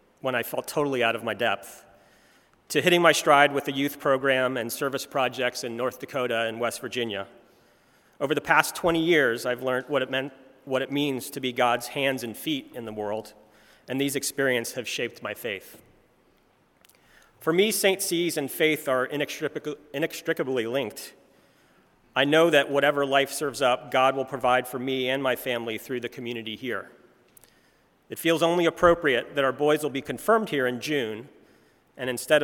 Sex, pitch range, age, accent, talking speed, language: male, 120-150 Hz, 40-59, American, 180 wpm, English